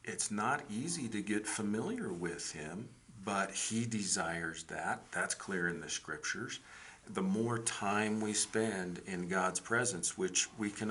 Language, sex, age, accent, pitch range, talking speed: English, male, 50-69, American, 95-115 Hz, 155 wpm